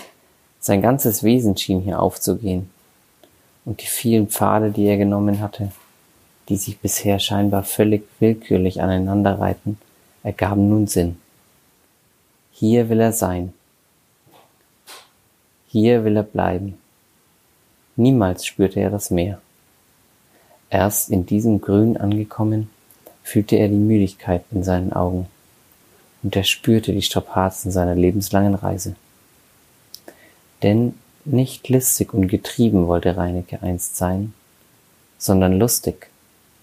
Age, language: 30-49, German